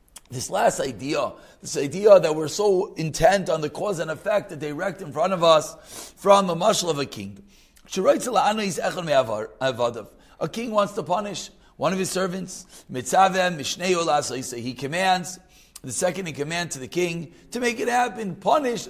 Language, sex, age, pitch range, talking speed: English, male, 40-59, 155-205 Hz, 165 wpm